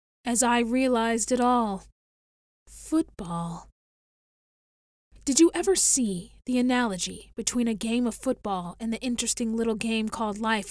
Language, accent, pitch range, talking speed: English, American, 215-245 Hz, 135 wpm